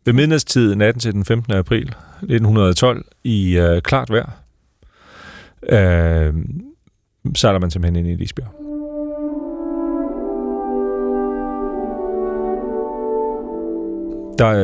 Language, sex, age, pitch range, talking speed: Danish, male, 40-59, 85-110 Hz, 80 wpm